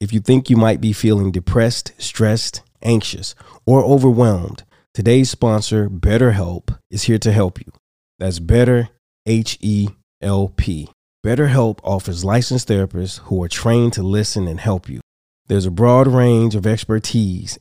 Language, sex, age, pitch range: English, male, 30-49, 100-120 Hz